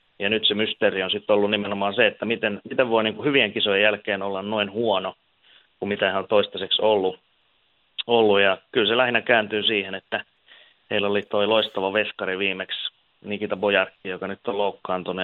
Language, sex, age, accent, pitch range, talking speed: Finnish, male, 30-49, native, 95-110 Hz, 175 wpm